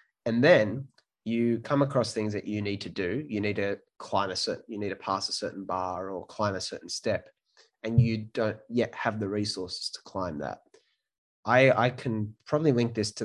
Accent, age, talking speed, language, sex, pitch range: Australian, 20-39, 210 wpm, English, male, 95-115 Hz